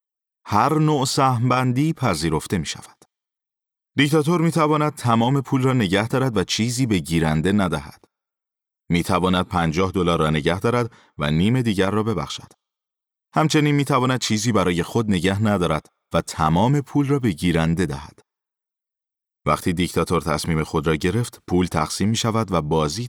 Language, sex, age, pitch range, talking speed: Persian, male, 30-49, 80-125 Hz, 150 wpm